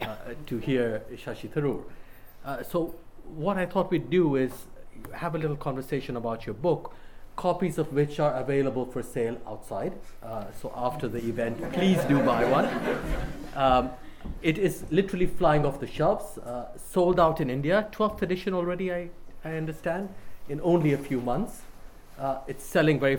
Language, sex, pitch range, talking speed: English, male, 120-170 Hz, 170 wpm